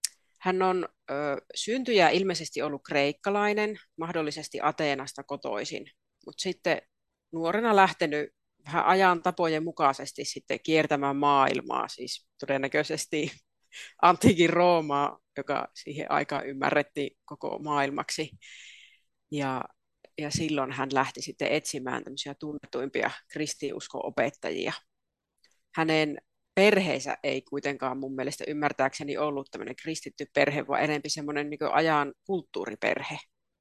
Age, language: 30-49, Finnish